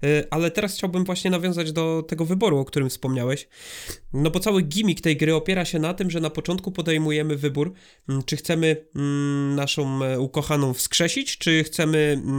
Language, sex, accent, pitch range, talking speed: Polish, male, native, 140-165 Hz, 160 wpm